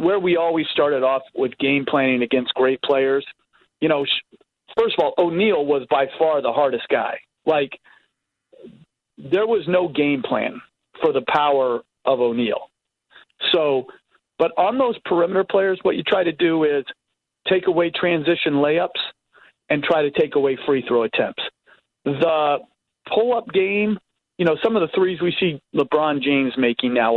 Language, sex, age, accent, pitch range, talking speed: English, male, 40-59, American, 135-175 Hz, 160 wpm